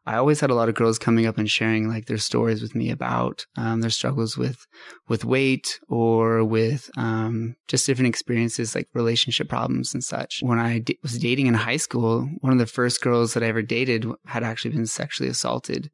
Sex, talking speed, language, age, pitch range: male, 205 wpm, English, 20-39, 110-125 Hz